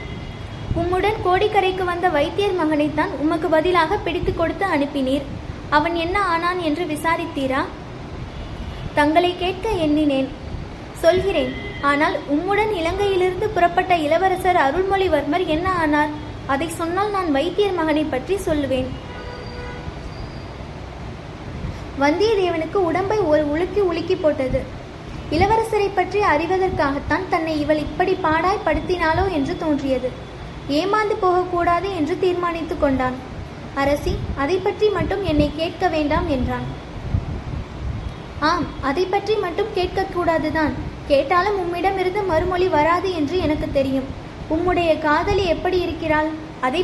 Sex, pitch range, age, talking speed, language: female, 300-375 Hz, 20-39, 95 wpm, Tamil